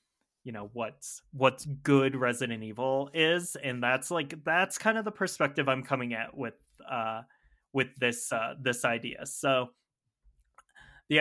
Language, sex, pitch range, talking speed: English, male, 120-150 Hz, 150 wpm